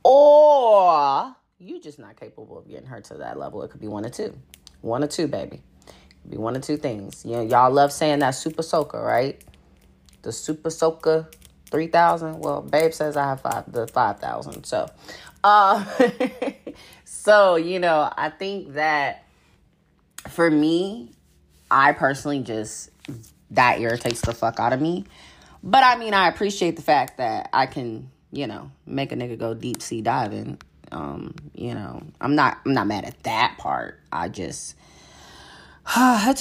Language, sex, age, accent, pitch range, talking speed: English, female, 30-49, American, 120-185 Hz, 170 wpm